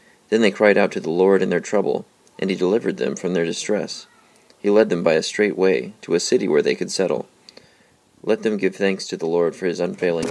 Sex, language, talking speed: male, English, 240 wpm